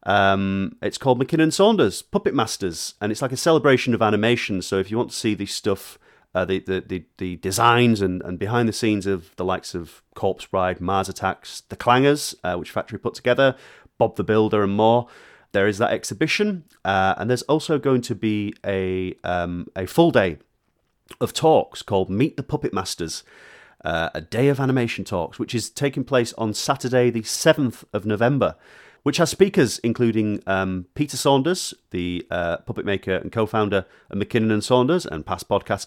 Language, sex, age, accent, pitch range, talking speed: English, male, 30-49, British, 95-130 Hz, 185 wpm